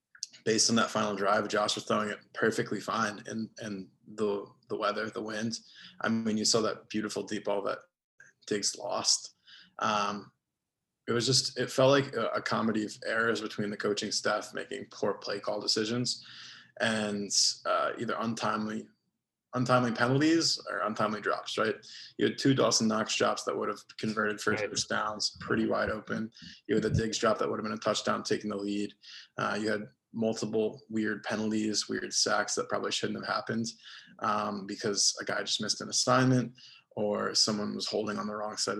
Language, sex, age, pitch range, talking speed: English, male, 20-39, 105-120 Hz, 180 wpm